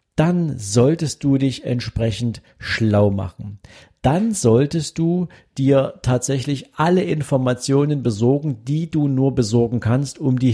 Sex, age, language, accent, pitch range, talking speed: male, 50-69, German, German, 110-135 Hz, 125 wpm